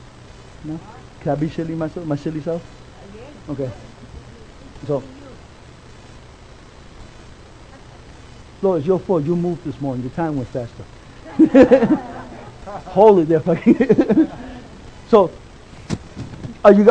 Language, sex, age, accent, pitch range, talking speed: English, male, 60-79, American, 145-200 Hz, 105 wpm